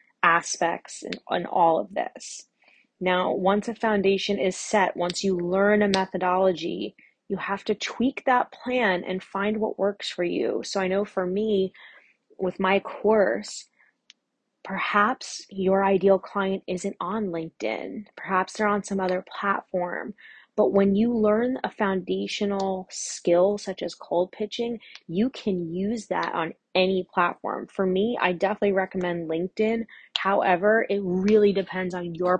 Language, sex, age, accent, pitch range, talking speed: English, female, 20-39, American, 175-205 Hz, 145 wpm